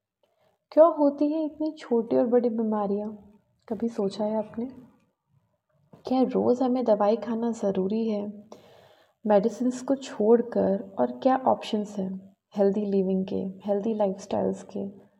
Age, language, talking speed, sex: 30-49, Hindi, 125 wpm, female